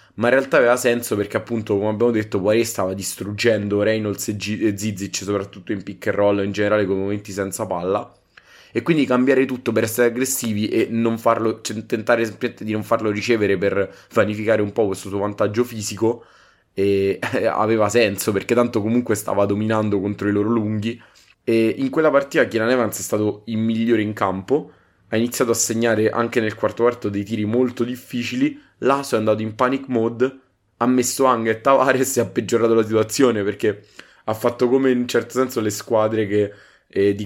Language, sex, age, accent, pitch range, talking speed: Italian, male, 20-39, native, 105-120 Hz, 190 wpm